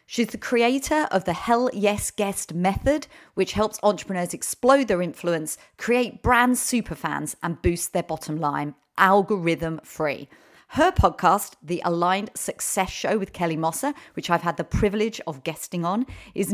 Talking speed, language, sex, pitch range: 150 wpm, English, female, 165-215 Hz